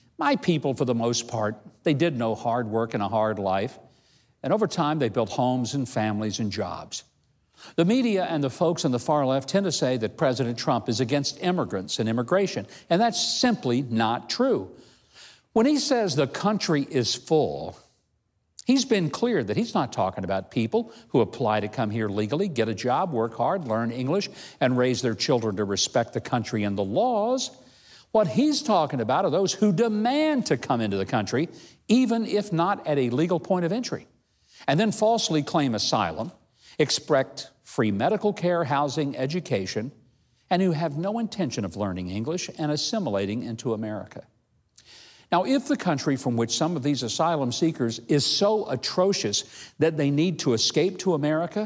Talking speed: 180 wpm